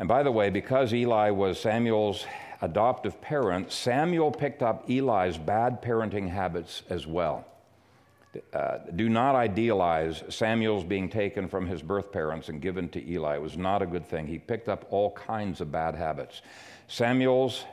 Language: English